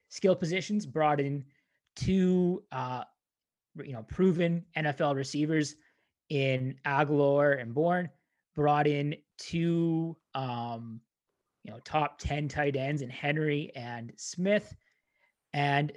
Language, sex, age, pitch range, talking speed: English, male, 20-39, 140-165 Hz, 115 wpm